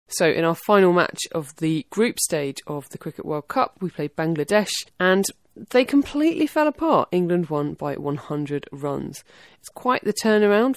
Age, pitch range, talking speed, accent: 30-49, 155-200 Hz, 175 wpm, British